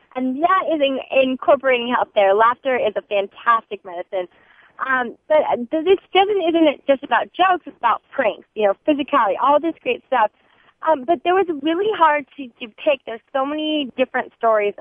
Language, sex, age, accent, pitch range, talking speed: English, female, 20-39, American, 225-300 Hz, 185 wpm